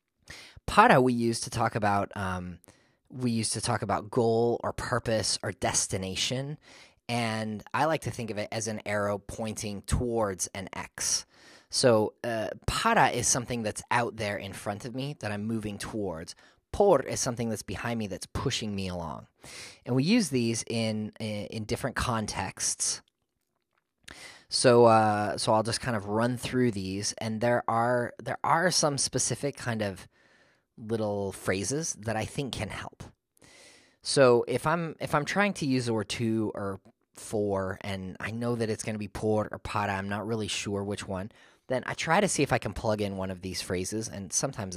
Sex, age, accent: male, 20-39, American